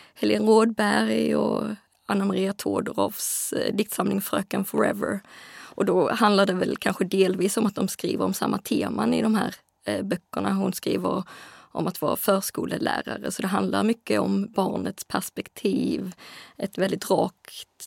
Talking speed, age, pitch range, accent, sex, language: 140 wpm, 20-39, 195-220 Hz, native, female, Swedish